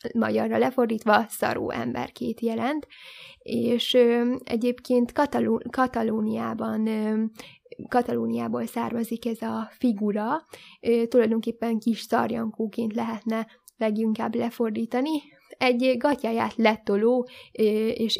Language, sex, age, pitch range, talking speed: Hungarian, female, 10-29, 220-240 Hz, 90 wpm